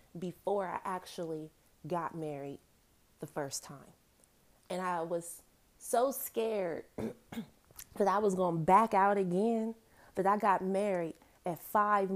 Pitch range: 165-200 Hz